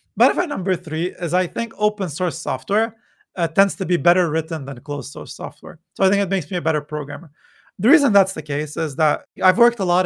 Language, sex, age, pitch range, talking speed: English, male, 30-49, 155-190 Hz, 235 wpm